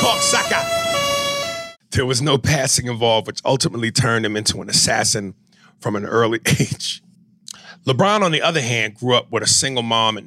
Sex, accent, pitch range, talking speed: male, American, 115-160 Hz, 165 wpm